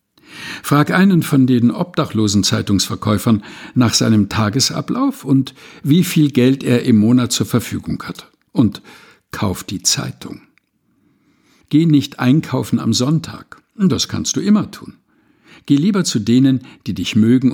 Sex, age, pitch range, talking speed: male, 60-79, 110-155 Hz, 135 wpm